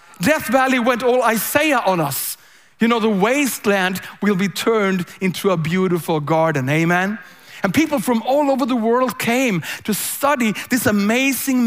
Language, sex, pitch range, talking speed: English, male, 180-235 Hz, 160 wpm